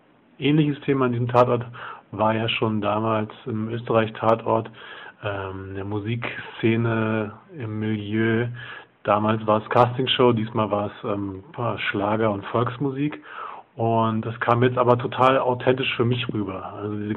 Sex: male